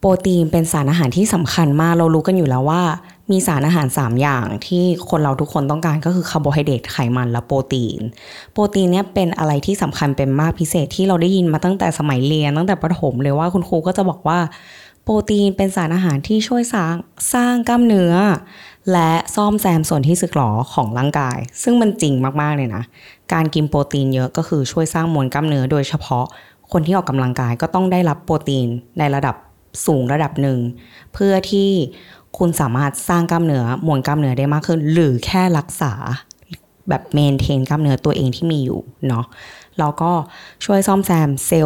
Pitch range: 135-175 Hz